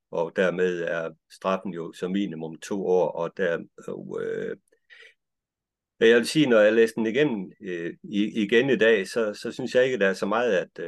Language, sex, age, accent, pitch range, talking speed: Danish, male, 60-79, native, 90-130 Hz, 195 wpm